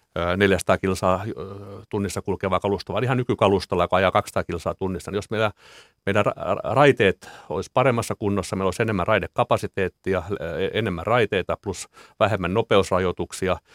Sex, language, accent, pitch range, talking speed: male, Finnish, native, 90-105 Hz, 125 wpm